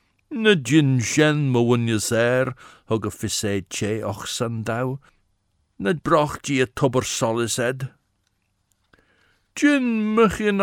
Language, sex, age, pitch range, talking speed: English, male, 60-79, 105-140 Hz, 115 wpm